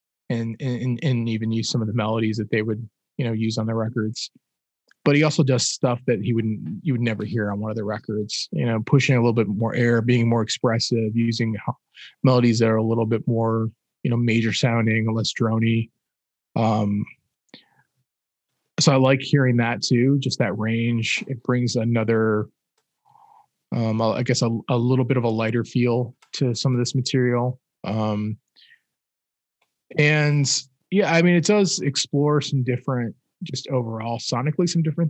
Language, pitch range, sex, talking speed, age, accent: English, 110-130 Hz, male, 180 wpm, 20-39, American